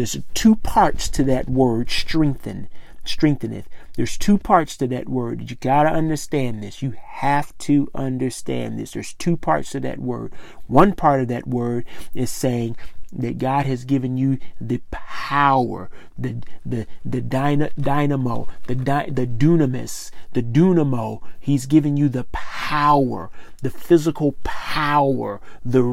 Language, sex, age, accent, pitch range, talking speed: English, male, 40-59, American, 130-155 Hz, 145 wpm